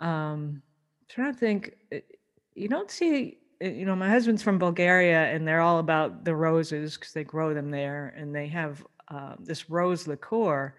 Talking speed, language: 180 wpm, English